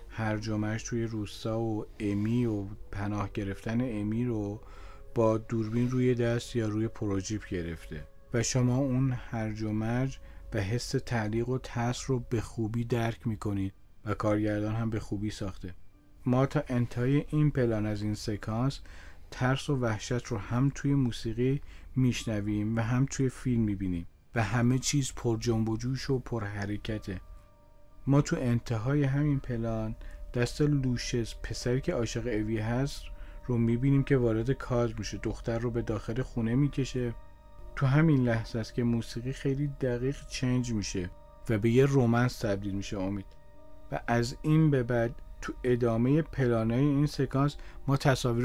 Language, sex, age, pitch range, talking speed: Persian, male, 40-59, 105-130 Hz, 155 wpm